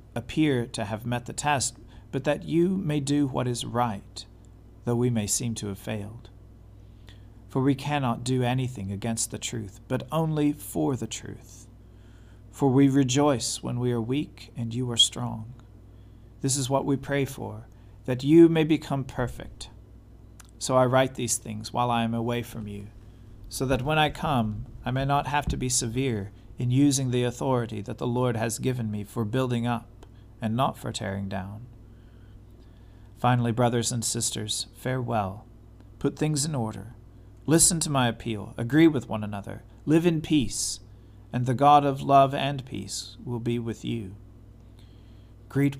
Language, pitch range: English, 110-130 Hz